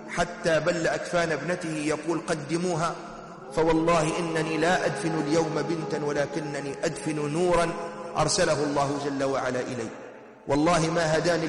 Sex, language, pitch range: male, Arabic, 165-205 Hz